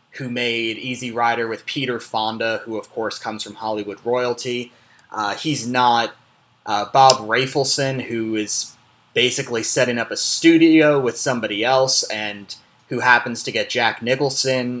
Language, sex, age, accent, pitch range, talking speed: English, male, 30-49, American, 115-140 Hz, 150 wpm